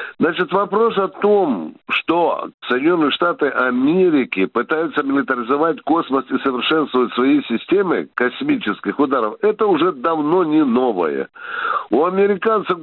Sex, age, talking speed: male, 60-79, 110 wpm